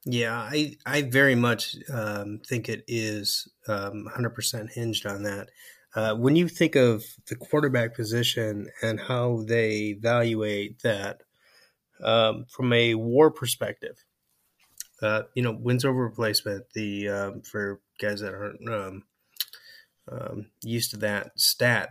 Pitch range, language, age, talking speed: 105-120 Hz, English, 30-49, 135 wpm